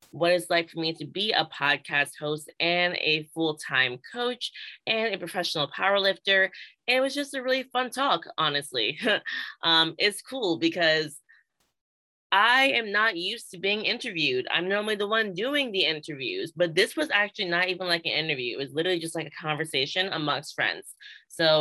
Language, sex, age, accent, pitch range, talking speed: English, female, 20-39, American, 150-195 Hz, 175 wpm